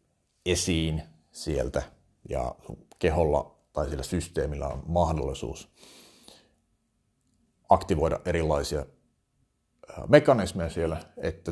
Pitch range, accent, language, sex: 80-100 Hz, native, Finnish, male